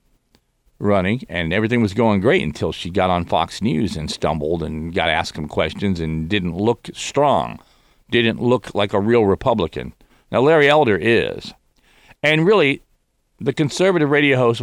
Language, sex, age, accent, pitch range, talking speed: English, male, 50-69, American, 85-115 Hz, 165 wpm